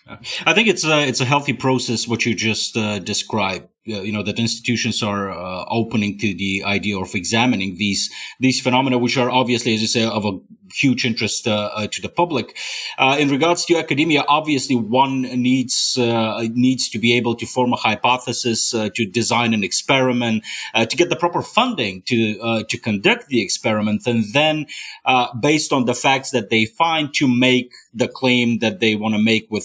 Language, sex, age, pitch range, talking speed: Bulgarian, male, 30-49, 115-145 Hz, 200 wpm